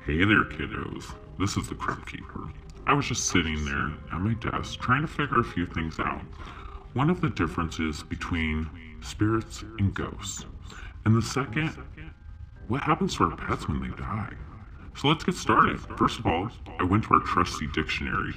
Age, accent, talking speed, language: 40-59, American, 180 wpm, English